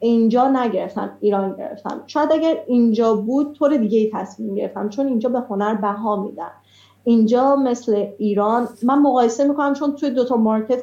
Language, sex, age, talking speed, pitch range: Persian, female, 30-49, 160 wpm, 210-260 Hz